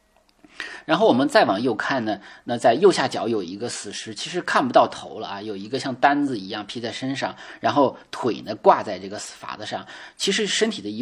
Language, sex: Chinese, male